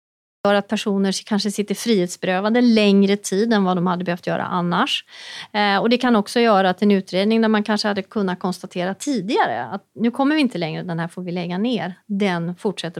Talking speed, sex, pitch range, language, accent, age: 200 wpm, female, 190-230 Hz, Swedish, native, 30-49